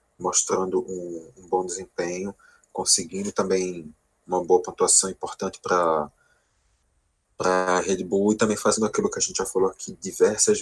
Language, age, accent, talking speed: Portuguese, 20-39, Brazilian, 145 wpm